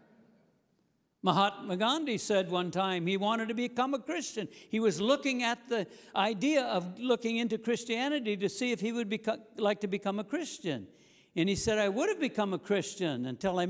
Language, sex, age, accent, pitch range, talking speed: English, male, 60-79, American, 185-245 Hz, 185 wpm